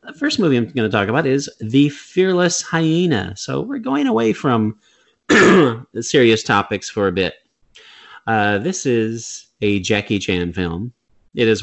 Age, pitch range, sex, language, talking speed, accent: 30-49, 95-130 Hz, male, English, 165 wpm, American